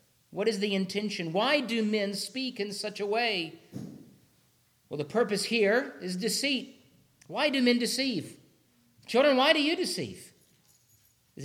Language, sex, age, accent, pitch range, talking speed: English, male, 50-69, American, 140-200 Hz, 145 wpm